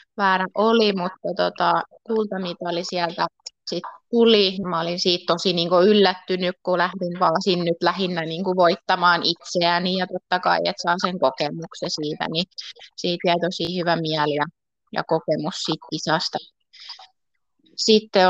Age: 20-39